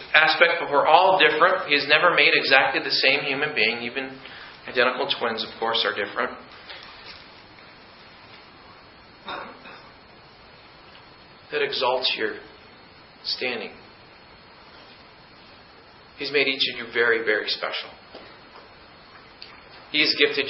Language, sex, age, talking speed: English, male, 40-59, 105 wpm